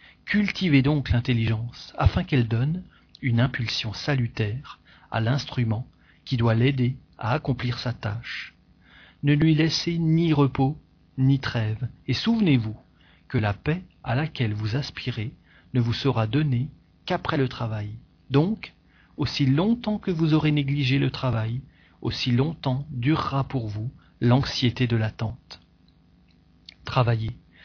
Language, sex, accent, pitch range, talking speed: French, male, French, 110-145 Hz, 130 wpm